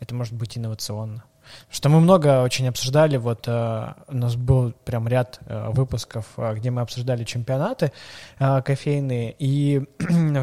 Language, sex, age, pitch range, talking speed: Russian, male, 20-39, 115-140 Hz, 155 wpm